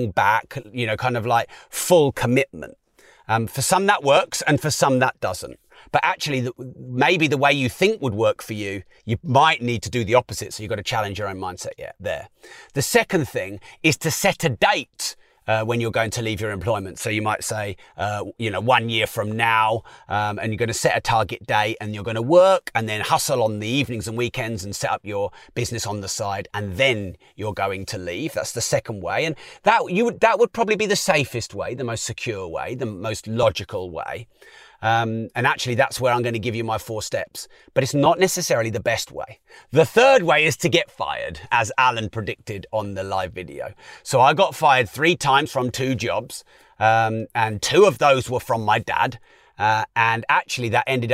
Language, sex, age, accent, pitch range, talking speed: English, male, 30-49, British, 110-130 Hz, 220 wpm